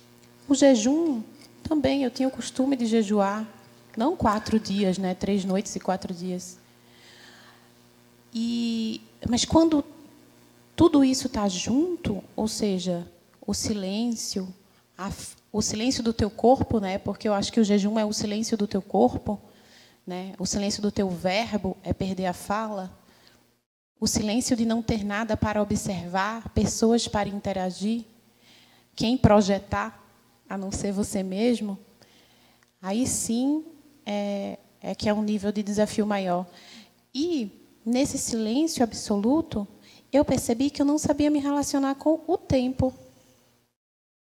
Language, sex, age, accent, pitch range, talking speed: Portuguese, female, 20-39, Brazilian, 200-255 Hz, 135 wpm